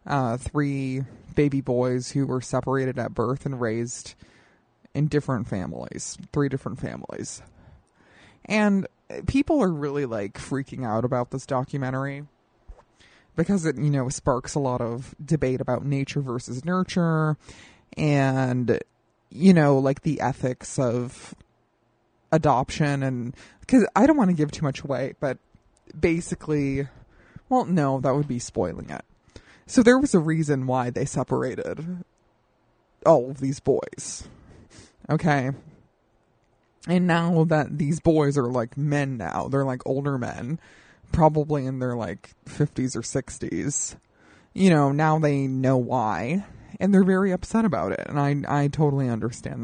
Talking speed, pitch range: 140 wpm, 125-155 Hz